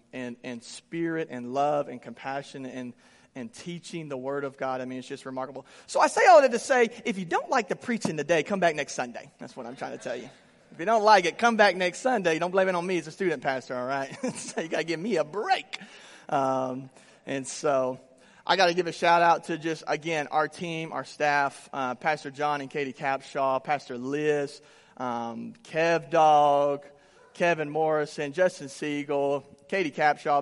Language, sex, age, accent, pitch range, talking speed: English, male, 30-49, American, 135-175 Hz, 210 wpm